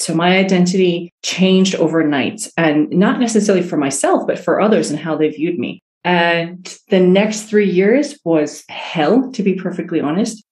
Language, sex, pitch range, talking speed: English, female, 155-195 Hz, 165 wpm